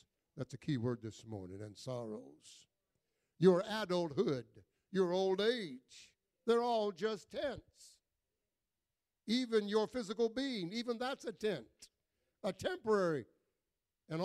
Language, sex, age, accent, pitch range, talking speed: English, male, 60-79, American, 145-230 Hz, 120 wpm